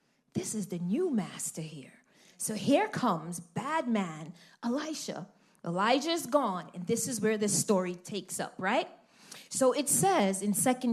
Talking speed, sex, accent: 155 wpm, female, American